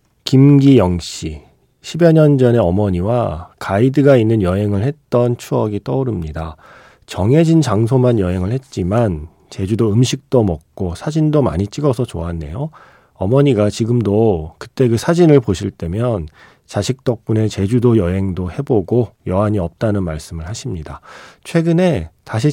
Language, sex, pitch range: Korean, male, 95-135 Hz